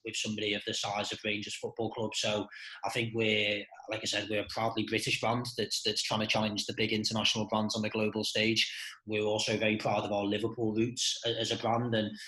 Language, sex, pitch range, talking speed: English, male, 105-115 Hz, 225 wpm